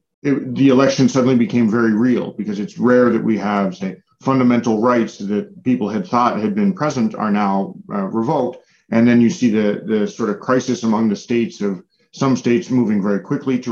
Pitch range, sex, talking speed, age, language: 110-130 Hz, male, 200 wpm, 40-59, Finnish